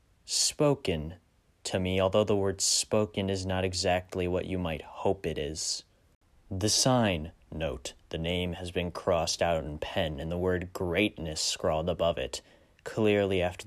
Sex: male